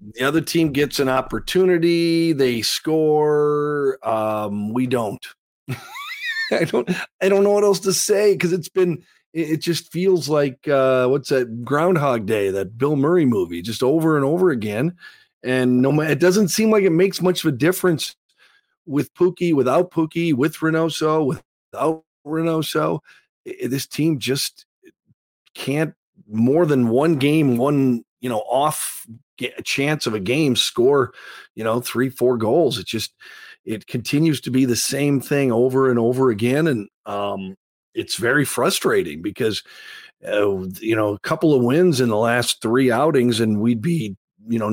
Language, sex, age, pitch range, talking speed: English, male, 40-59, 120-170 Hz, 165 wpm